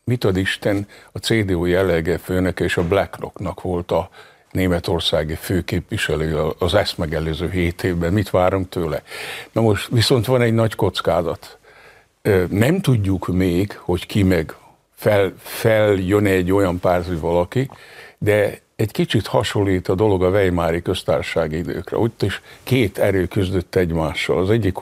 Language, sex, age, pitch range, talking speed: Hungarian, male, 60-79, 90-110 Hz, 145 wpm